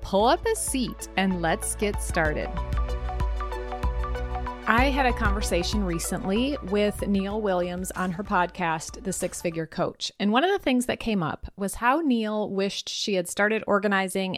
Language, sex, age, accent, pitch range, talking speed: English, female, 30-49, American, 175-235 Hz, 165 wpm